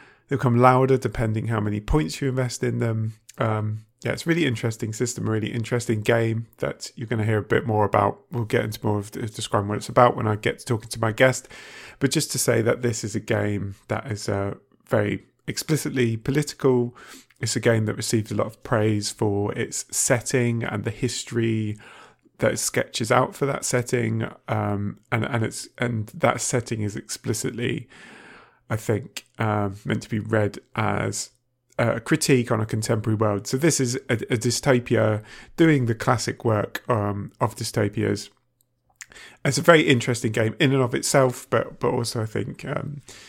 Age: 30-49